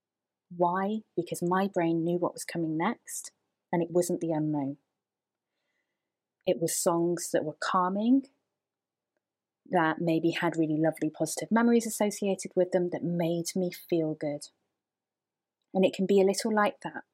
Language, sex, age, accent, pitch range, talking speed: English, female, 30-49, British, 170-200 Hz, 150 wpm